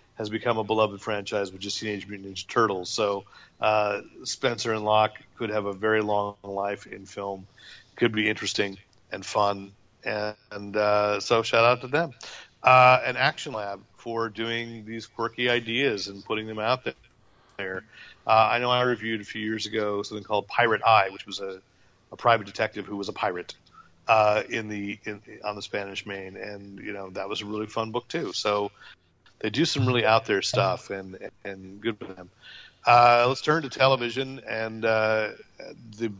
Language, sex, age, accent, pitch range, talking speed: English, male, 40-59, American, 100-115 Hz, 185 wpm